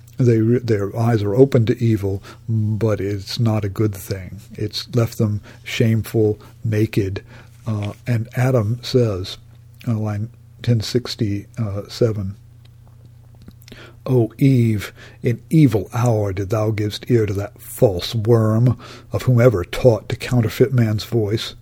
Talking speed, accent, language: 125 wpm, American, English